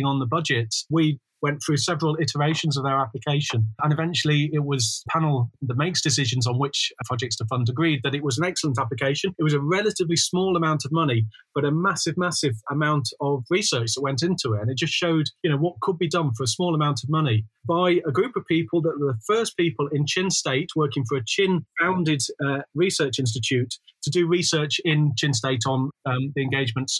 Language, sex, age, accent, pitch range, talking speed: English, male, 30-49, British, 135-165 Hz, 215 wpm